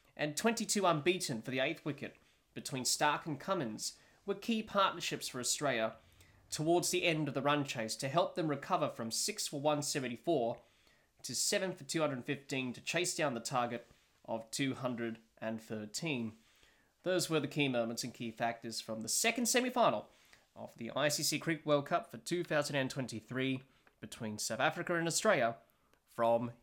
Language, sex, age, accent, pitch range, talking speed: English, male, 20-39, Australian, 120-155 Hz, 155 wpm